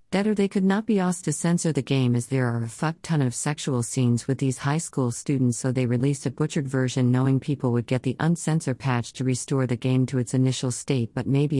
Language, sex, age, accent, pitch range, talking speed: English, female, 50-69, American, 130-160 Hz, 250 wpm